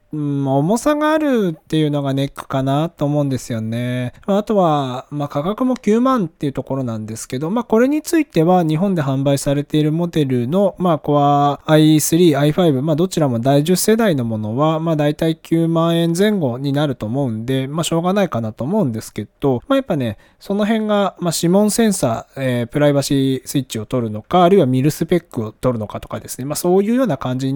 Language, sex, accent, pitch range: Japanese, male, native, 130-185 Hz